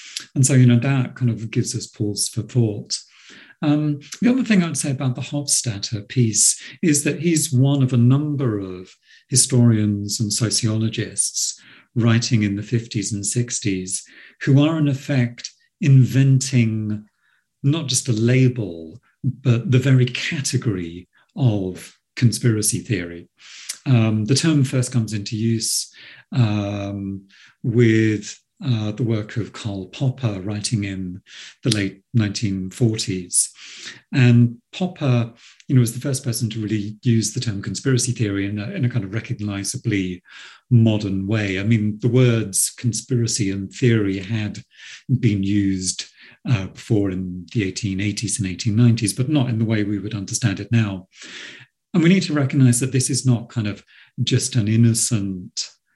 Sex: male